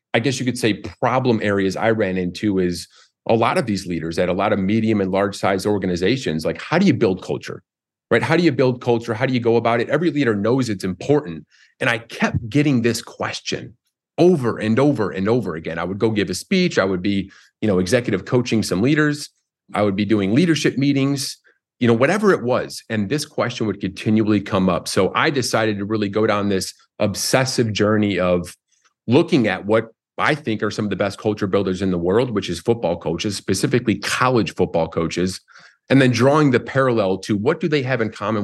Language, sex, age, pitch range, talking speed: English, male, 30-49, 95-120 Hz, 215 wpm